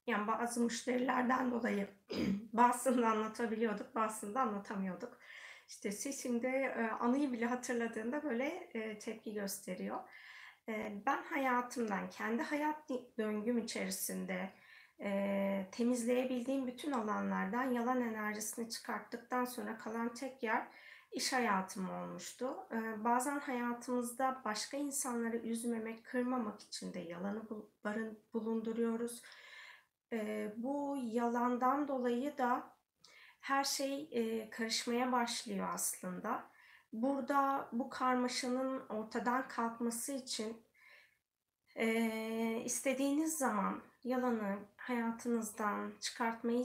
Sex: female